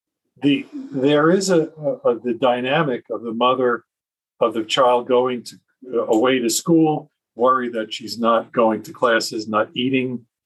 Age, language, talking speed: 50-69, English, 165 wpm